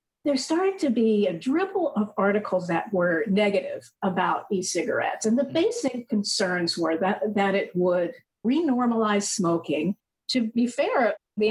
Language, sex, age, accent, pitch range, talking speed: English, female, 50-69, American, 185-230 Hz, 150 wpm